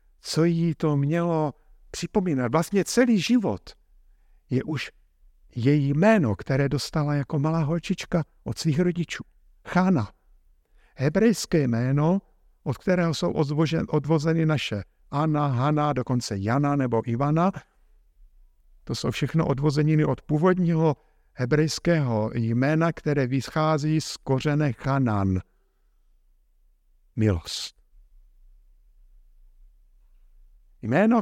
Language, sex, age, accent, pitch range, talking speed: Czech, male, 50-69, native, 115-175 Hz, 95 wpm